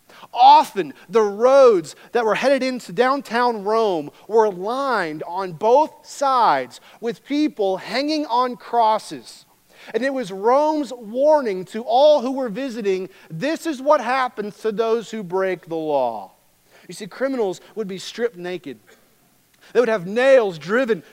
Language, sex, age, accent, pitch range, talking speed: English, male, 40-59, American, 160-255 Hz, 145 wpm